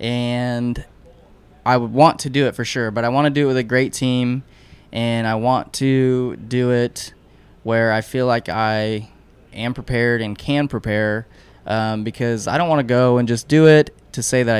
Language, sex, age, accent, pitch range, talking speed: English, male, 20-39, American, 105-125 Hz, 200 wpm